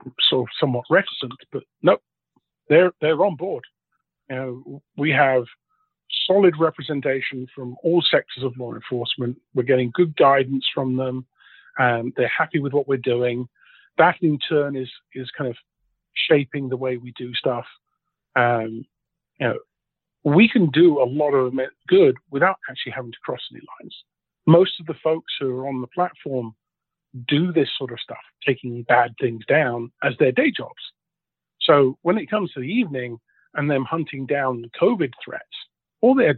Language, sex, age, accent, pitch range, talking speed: English, male, 40-59, British, 125-160 Hz, 165 wpm